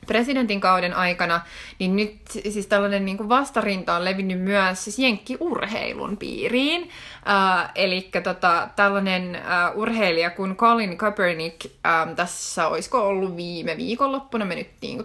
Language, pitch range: Finnish, 175-210 Hz